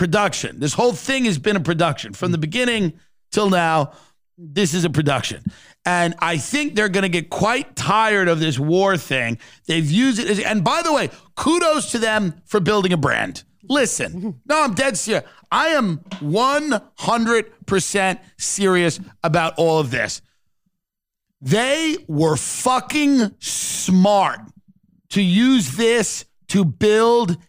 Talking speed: 145 wpm